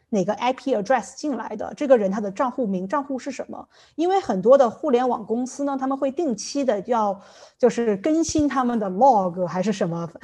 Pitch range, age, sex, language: 205-265 Hz, 20-39, female, Chinese